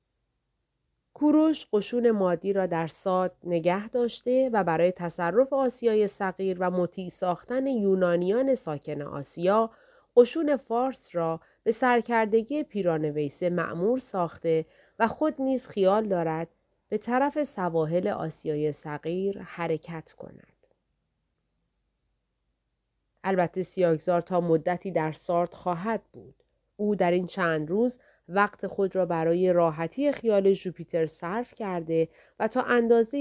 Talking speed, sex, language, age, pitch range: 115 wpm, female, Persian, 30-49, 165-225 Hz